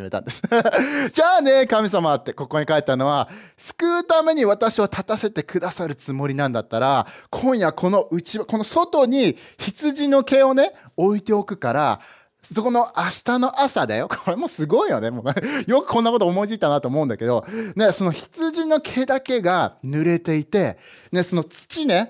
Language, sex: Japanese, male